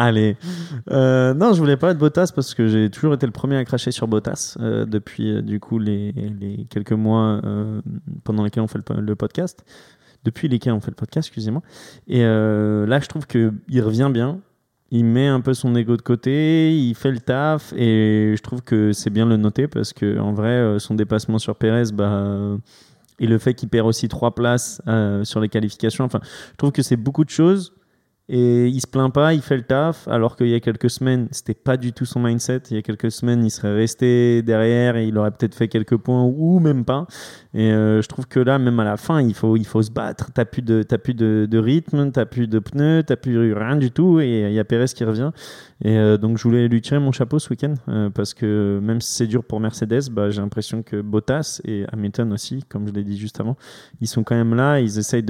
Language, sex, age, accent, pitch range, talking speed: French, male, 20-39, French, 110-130 Hz, 240 wpm